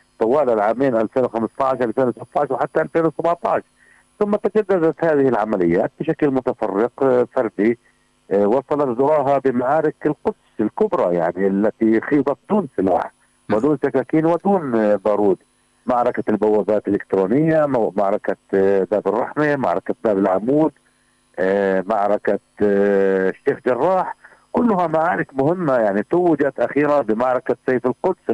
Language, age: Arabic, 50-69